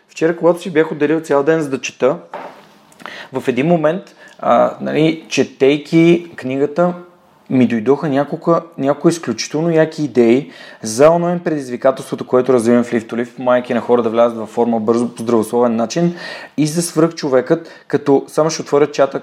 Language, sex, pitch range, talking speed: Bulgarian, male, 125-155 Hz, 160 wpm